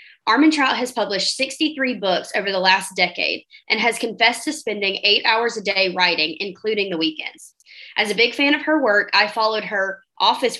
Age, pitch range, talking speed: 20-39, 195-250 Hz, 195 wpm